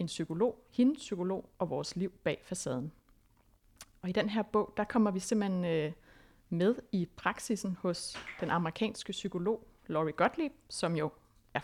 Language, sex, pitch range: Danish, female, 165-215 Hz